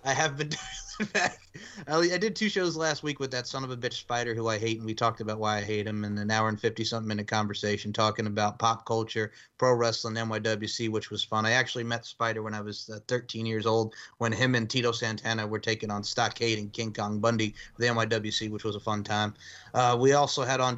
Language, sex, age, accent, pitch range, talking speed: English, male, 30-49, American, 115-145 Hz, 235 wpm